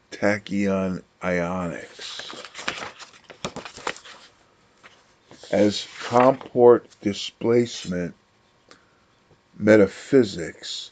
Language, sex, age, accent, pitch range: English, male, 50-69, American, 100-115 Hz